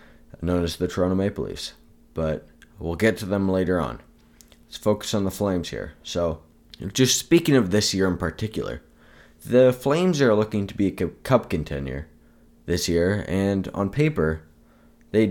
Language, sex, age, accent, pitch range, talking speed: English, male, 20-39, American, 85-115 Hz, 165 wpm